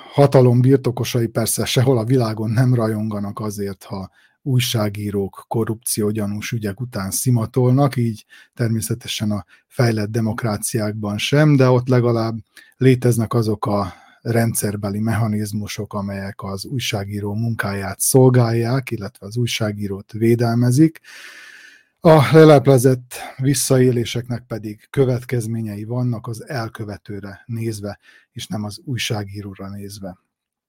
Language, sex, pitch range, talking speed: Hungarian, male, 105-125 Hz, 100 wpm